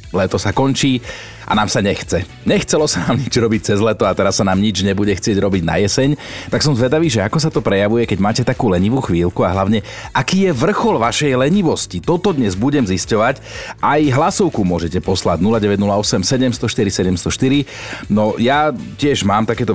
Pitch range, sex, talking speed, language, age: 100-130 Hz, male, 180 wpm, Slovak, 40-59